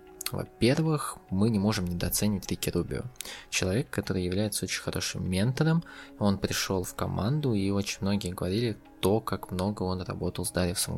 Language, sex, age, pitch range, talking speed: Russian, male, 20-39, 90-110 Hz, 155 wpm